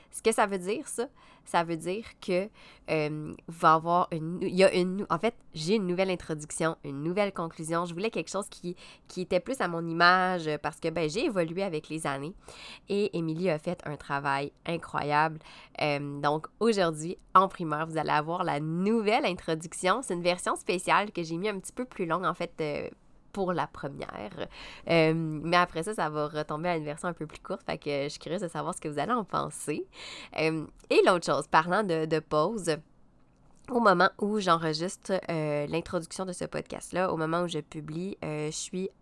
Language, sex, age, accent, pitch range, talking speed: French, female, 20-39, Canadian, 155-185 Hz, 210 wpm